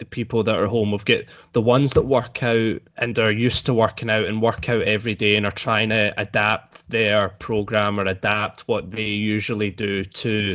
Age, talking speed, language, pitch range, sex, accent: 20-39, 210 wpm, English, 105-120 Hz, male, British